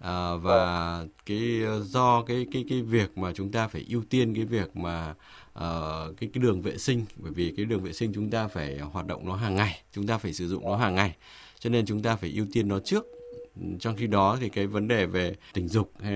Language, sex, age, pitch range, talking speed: English, male, 20-39, 95-120 Hz, 240 wpm